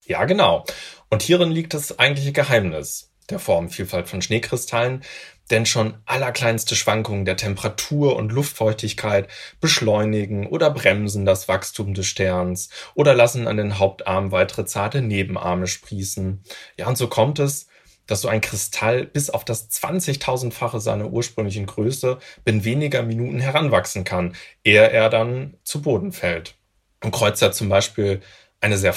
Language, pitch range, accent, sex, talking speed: German, 100-125 Hz, German, male, 145 wpm